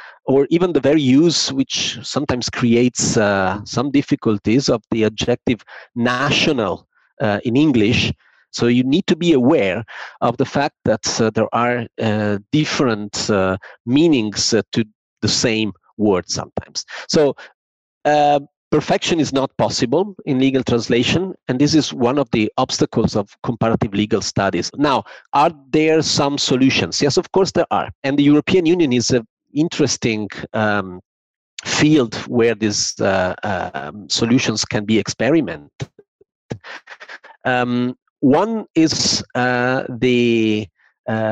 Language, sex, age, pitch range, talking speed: English, male, 50-69, 110-145 Hz, 135 wpm